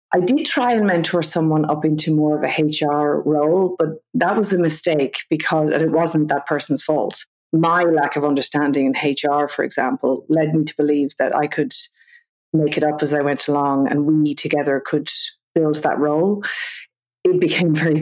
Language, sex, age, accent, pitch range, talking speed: English, female, 30-49, Irish, 150-165 Hz, 185 wpm